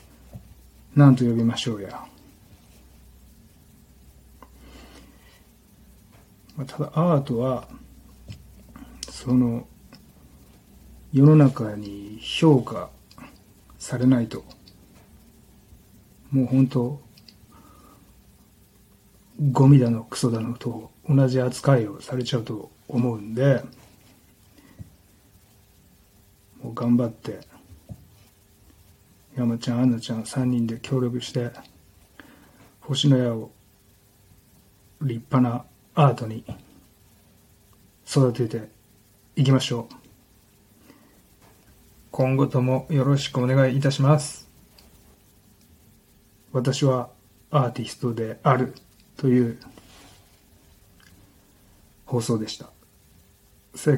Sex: male